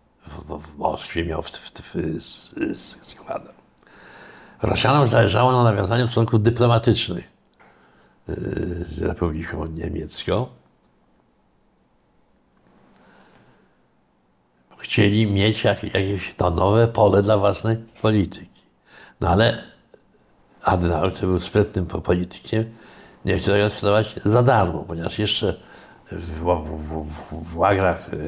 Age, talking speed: 60-79, 100 wpm